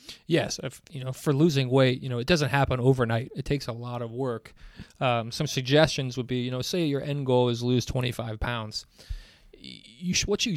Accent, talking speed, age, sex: American, 220 wpm, 30-49, male